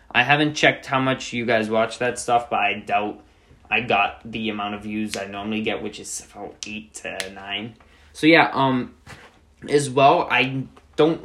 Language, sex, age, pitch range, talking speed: English, male, 20-39, 105-130 Hz, 185 wpm